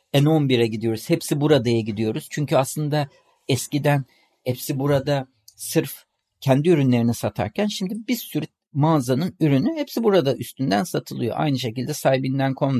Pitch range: 120-170 Hz